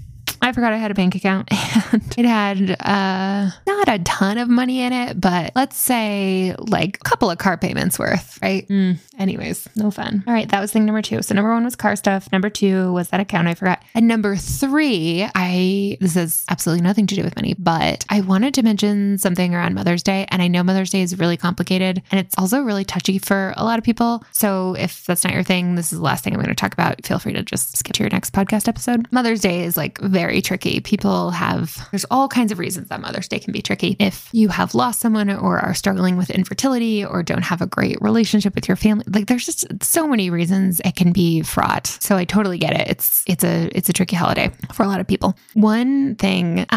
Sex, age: female, 10-29